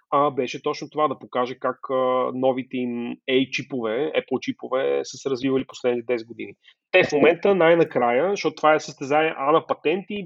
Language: Bulgarian